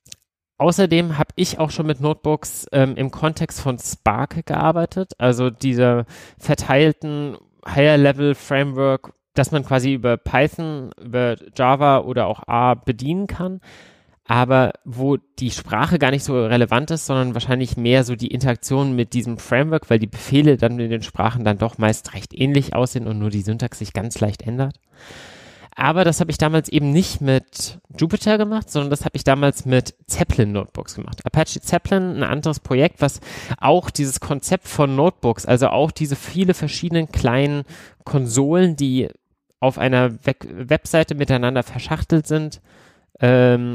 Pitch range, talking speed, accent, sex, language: 125-155 Hz, 155 wpm, German, male, German